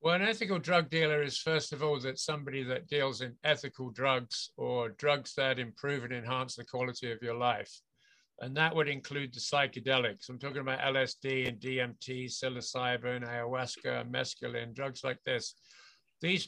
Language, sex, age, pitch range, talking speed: English, male, 60-79, 125-145 Hz, 170 wpm